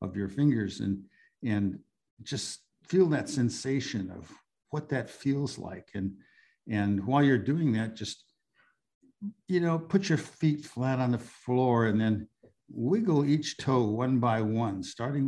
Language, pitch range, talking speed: English, 105-140 Hz, 155 wpm